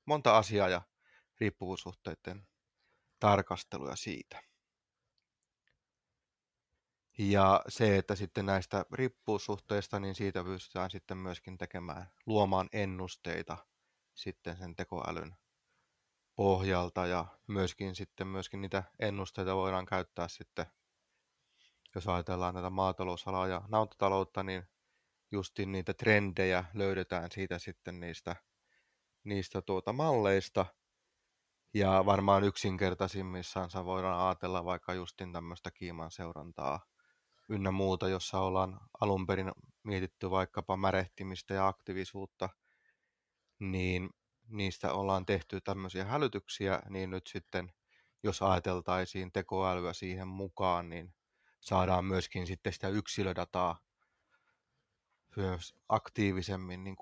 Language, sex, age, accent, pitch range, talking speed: Finnish, male, 20-39, native, 90-100 Hz, 95 wpm